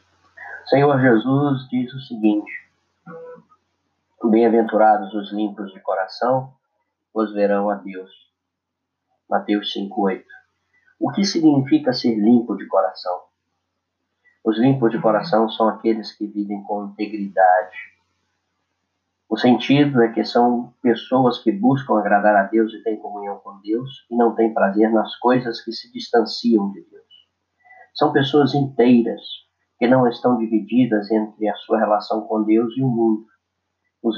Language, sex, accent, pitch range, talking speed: Portuguese, male, Brazilian, 105-130 Hz, 135 wpm